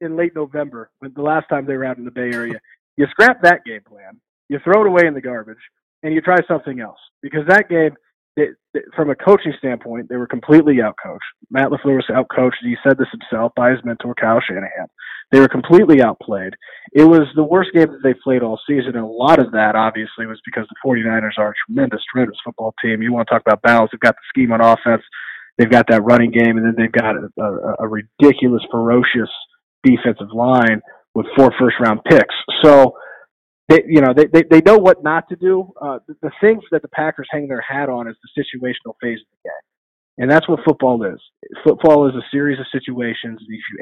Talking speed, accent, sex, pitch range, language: 225 wpm, American, male, 115-145 Hz, English